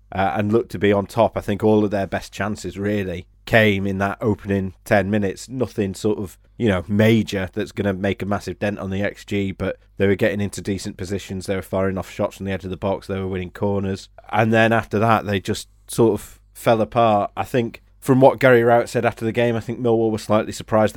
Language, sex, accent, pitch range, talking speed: English, male, British, 95-110 Hz, 245 wpm